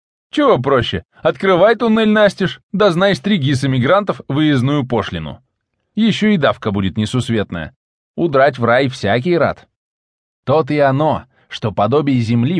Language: English